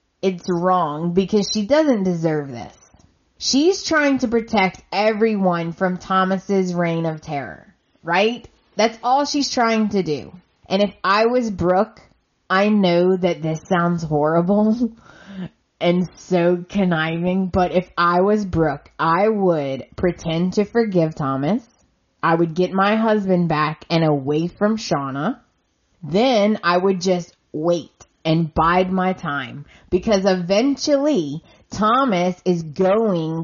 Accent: American